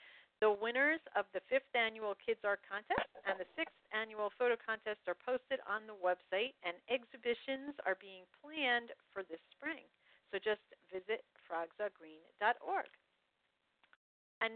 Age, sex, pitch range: 50-69, female, 195-260 Hz